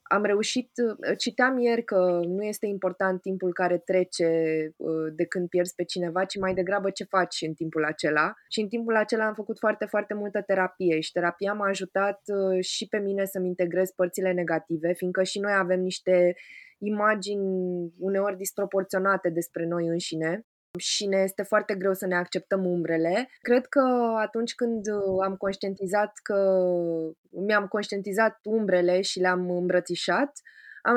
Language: Romanian